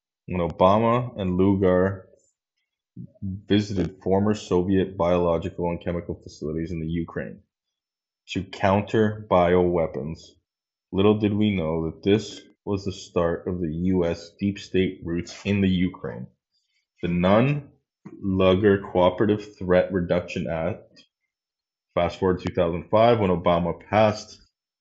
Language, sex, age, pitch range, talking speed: English, male, 20-39, 90-105 Hz, 120 wpm